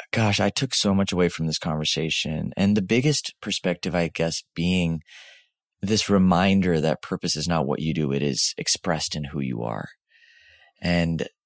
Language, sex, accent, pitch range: English, male, American, 80-100 Hz